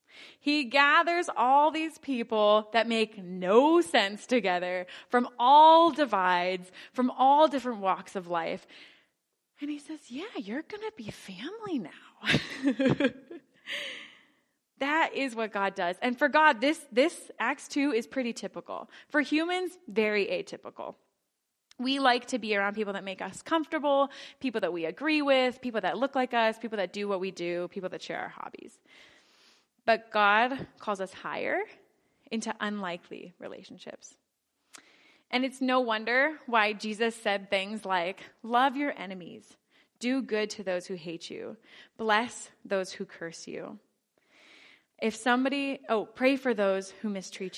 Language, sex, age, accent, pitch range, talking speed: English, female, 20-39, American, 200-275 Hz, 150 wpm